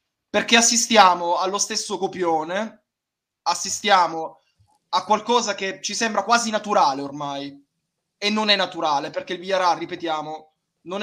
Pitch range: 165-215 Hz